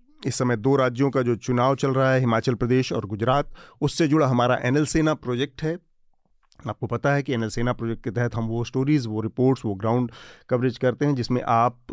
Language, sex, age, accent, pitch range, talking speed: Hindi, male, 40-59, native, 120-140 Hz, 200 wpm